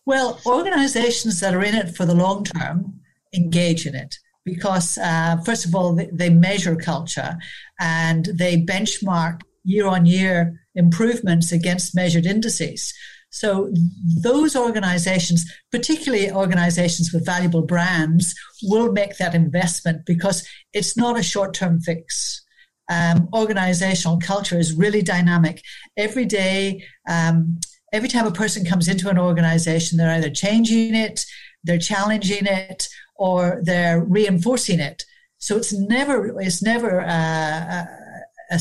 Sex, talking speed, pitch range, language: female, 130 wpm, 170-205 Hz, English